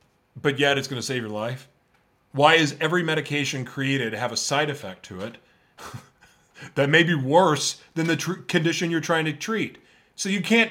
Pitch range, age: 120-165 Hz, 30-49